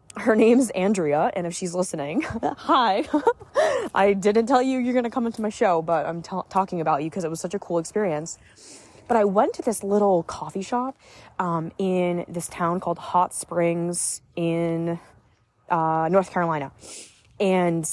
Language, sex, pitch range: English, female, 165-230 Hz